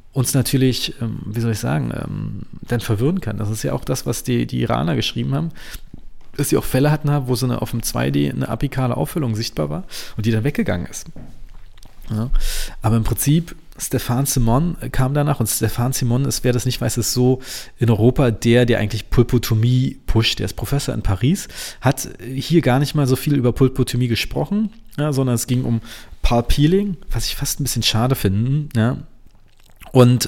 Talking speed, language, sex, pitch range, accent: 190 wpm, German, male, 115-135 Hz, German